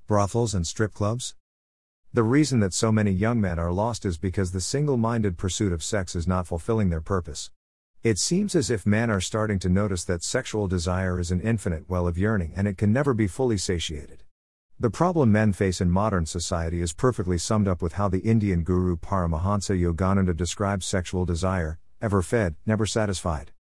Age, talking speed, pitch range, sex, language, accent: 50-69, 190 wpm, 90-115 Hz, male, English, American